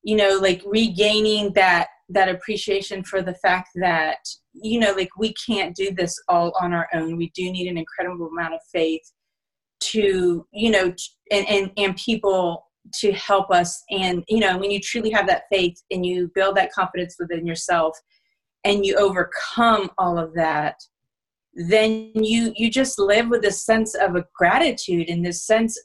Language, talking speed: English, 175 wpm